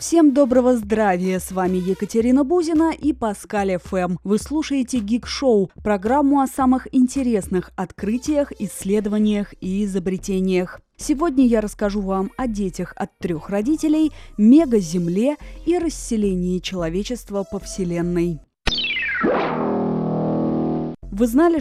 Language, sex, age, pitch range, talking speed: Russian, female, 20-39, 195-255 Hz, 105 wpm